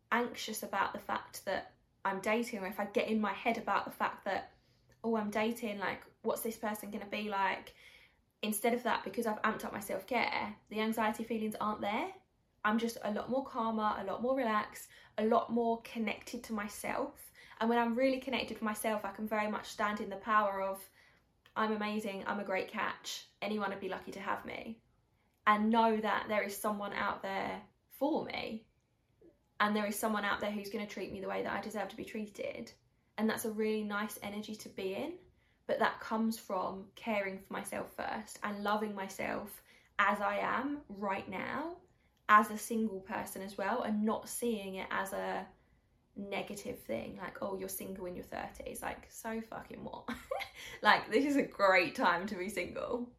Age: 10-29